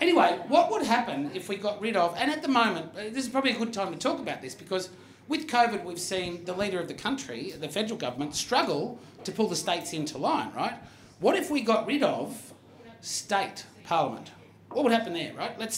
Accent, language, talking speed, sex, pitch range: Australian, English, 220 wpm, male, 150-215 Hz